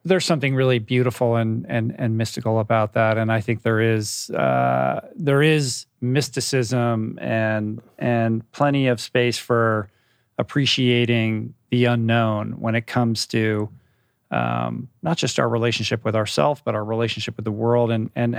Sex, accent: male, American